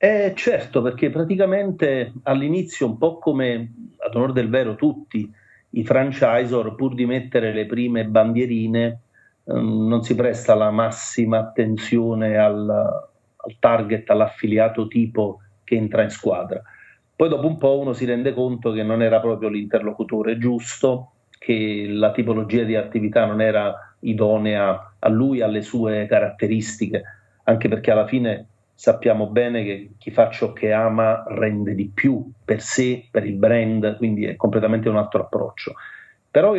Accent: native